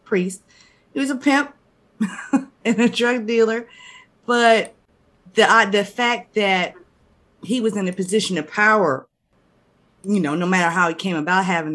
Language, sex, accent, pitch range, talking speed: English, female, American, 155-195 Hz, 160 wpm